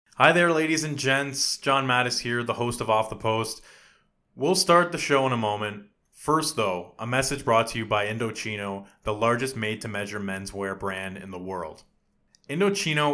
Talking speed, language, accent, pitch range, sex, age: 180 wpm, English, American, 105-135 Hz, male, 20-39